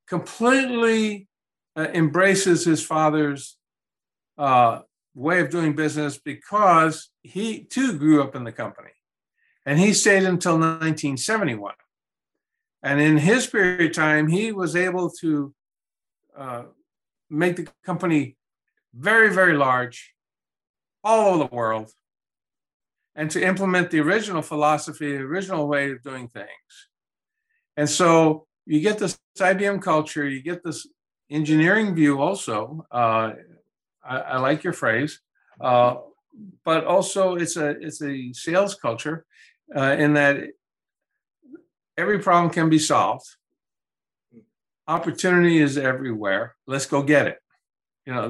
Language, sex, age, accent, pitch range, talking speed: English, male, 50-69, American, 145-185 Hz, 125 wpm